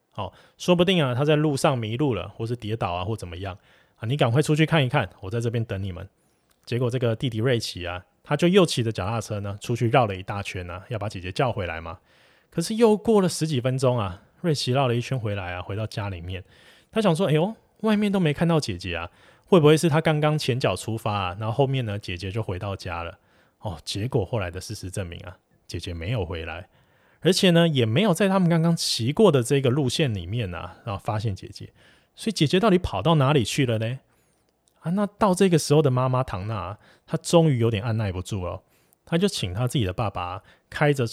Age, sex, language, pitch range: 20-39, male, Chinese, 100-150 Hz